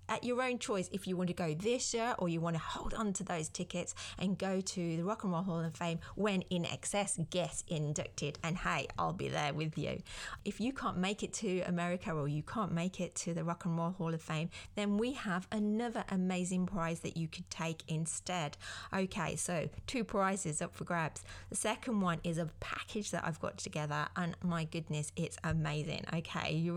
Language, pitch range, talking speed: English, 165-190 Hz, 215 wpm